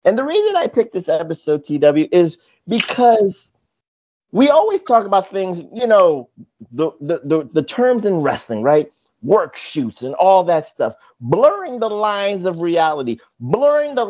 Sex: male